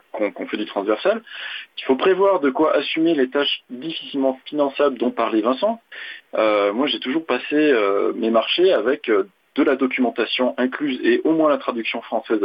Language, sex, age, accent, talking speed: French, male, 40-59, French, 180 wpm